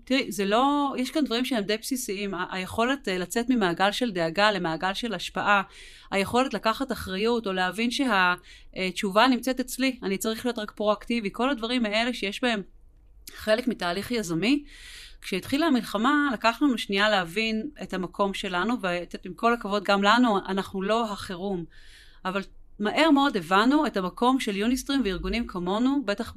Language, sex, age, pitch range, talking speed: Hebrew, female, 30-49, 190-250 Hz, 150 wpm